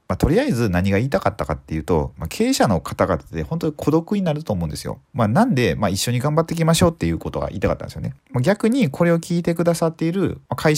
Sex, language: male, Japanese